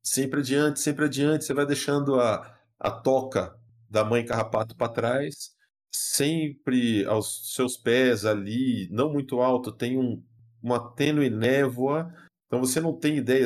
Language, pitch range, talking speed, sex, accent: Portuguese, 110-145 Hz, 145 wpm, male, Brazilian